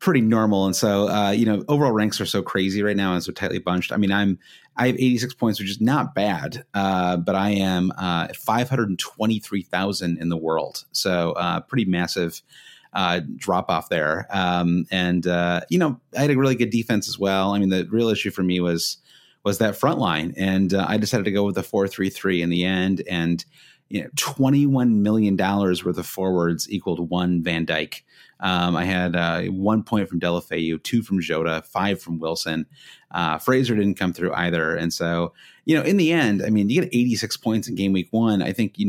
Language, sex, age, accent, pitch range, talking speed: English, male, 30-49, American, 90-110 Hz, 220 wpm